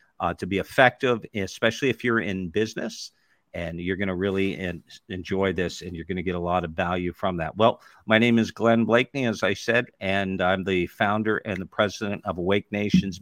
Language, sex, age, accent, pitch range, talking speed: English, male, 50-69, American, 100-120 Hz, 210 wpm